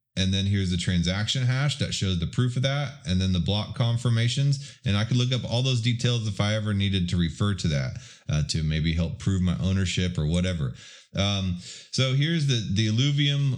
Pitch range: 95-125 Hz